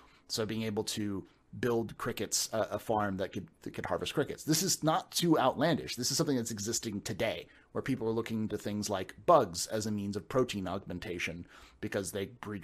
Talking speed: 205 wpm